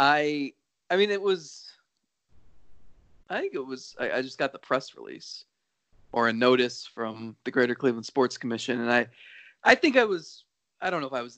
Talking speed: 195 wpm